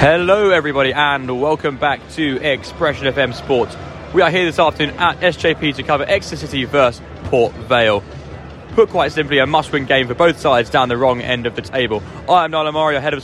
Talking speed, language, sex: 200 wpm, English, male